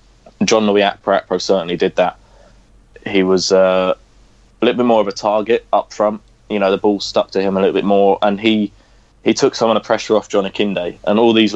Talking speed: 220 wpm